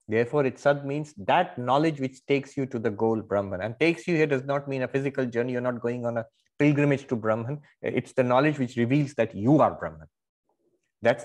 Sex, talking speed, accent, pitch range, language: male, 215 wpm, Indian, 115-155 Hz, English